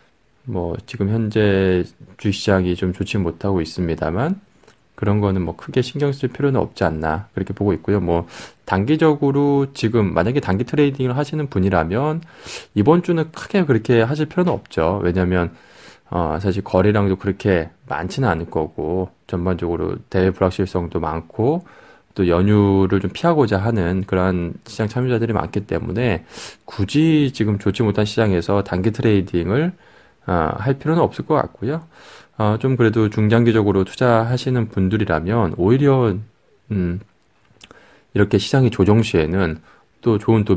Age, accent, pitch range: 20-39, native, 90-125 Hz